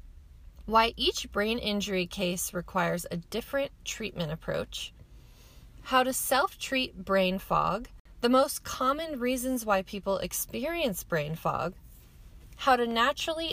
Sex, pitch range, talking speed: female, 185-260 Hz, 120 wpm